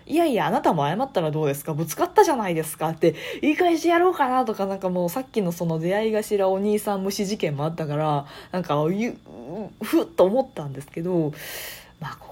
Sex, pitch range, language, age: female, 155-210 Hz, Japanese, 20-39